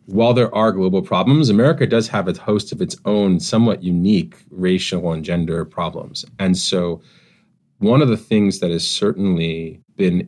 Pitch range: 90-120 Hz